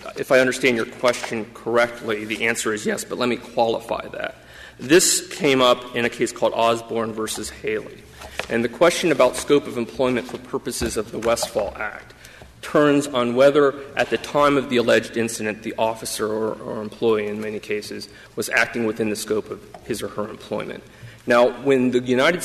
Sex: male